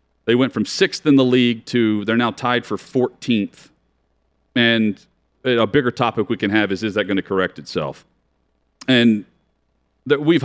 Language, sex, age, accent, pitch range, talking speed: English, male, 40-59, American, 95-135 Hz, 165 wpm